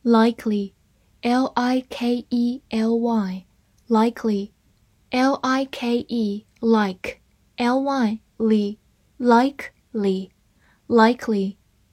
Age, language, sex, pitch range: 10-29, Chinese, female, 195-250 Hz